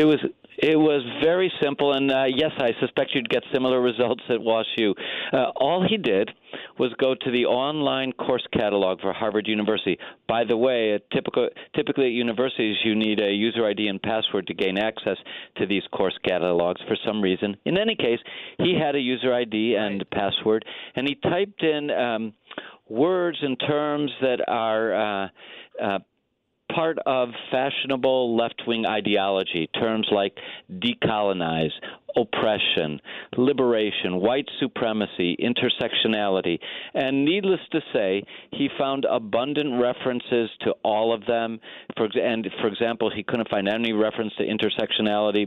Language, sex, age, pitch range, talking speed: English, male, 50-69, 105-135 Hz, 150 wpm